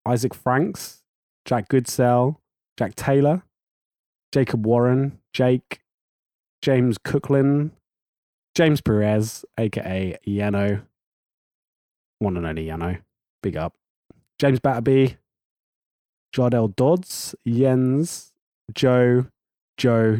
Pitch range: 115-135 Hz